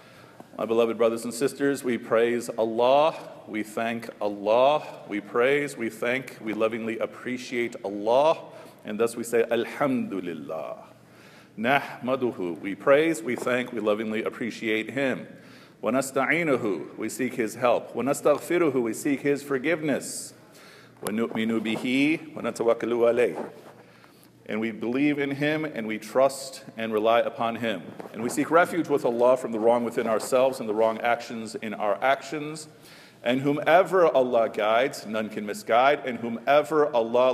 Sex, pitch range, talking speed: male, 115-140 Hz, 140 wpm